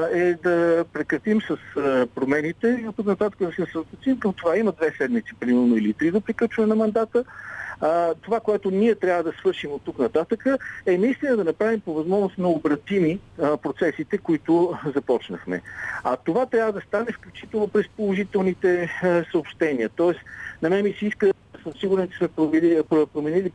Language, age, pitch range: Bulgarian, 50-69, 155-205 Hz